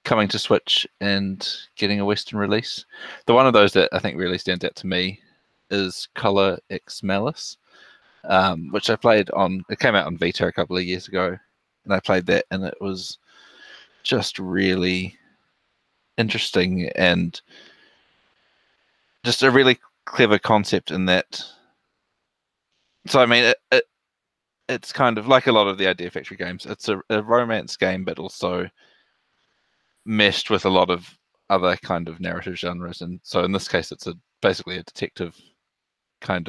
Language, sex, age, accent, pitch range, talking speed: English, male, 20-39, Australian, 90-105 Hz, 165 wpm